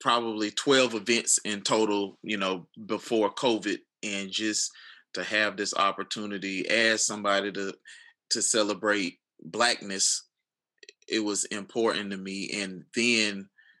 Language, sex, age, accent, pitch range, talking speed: English, male, 20-39, American, 100-115 Hz, 120 wpm